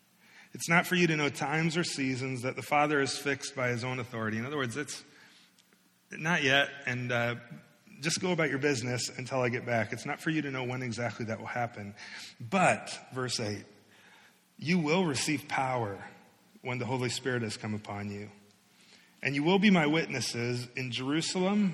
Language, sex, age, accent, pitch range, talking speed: English, male, 30-49, American, 125-170 Hz, 190 wpm